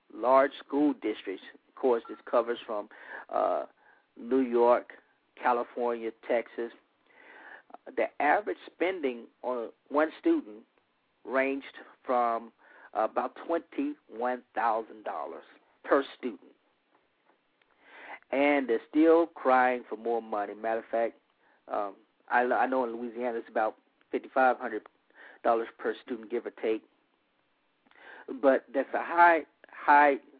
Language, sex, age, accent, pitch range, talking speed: English, male, 50-69, American, 115-135 Hz, 110 wpm